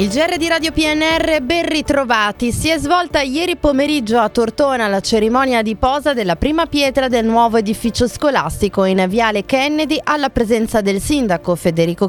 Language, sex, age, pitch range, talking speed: Italian, female, 20-39, 195-265 Hz, 165 wpm